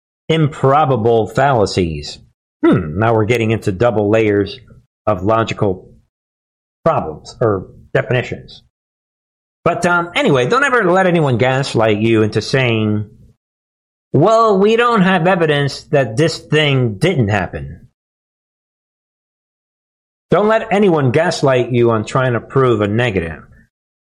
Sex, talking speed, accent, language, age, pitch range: male, 115 wpm, American, English, 50-69, 115-155 Hz